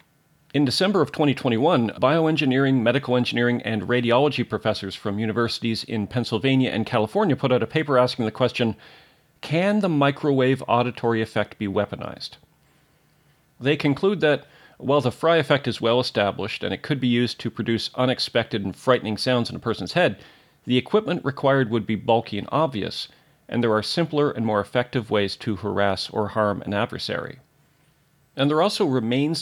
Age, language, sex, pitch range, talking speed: 40-59, English, male, 110-145 Hz, 165 wpm